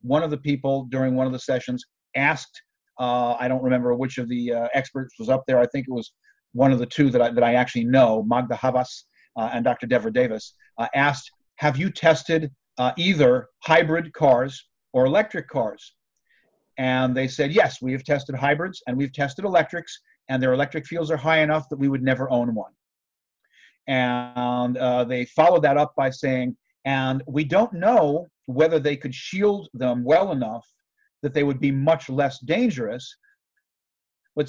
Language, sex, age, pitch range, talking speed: English, male, 50-69, 125-155 Hz, 185 wpm